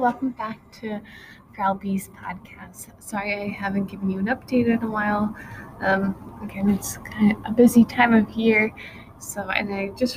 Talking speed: 170 wpm